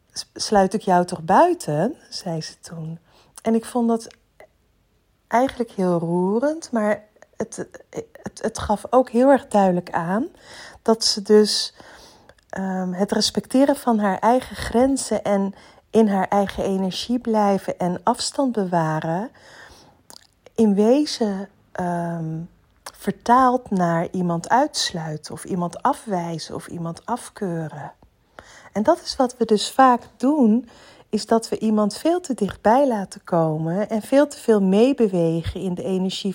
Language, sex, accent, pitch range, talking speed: Dutch, female, Dutch, 175-230 Hz, 130 wpm